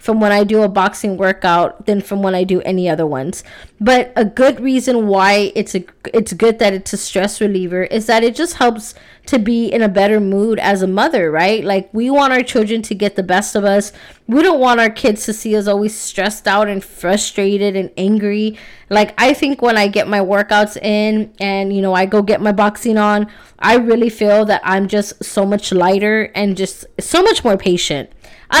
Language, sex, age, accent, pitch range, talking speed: English, female, 20-39, American, 200-235 Hz, 220 wpm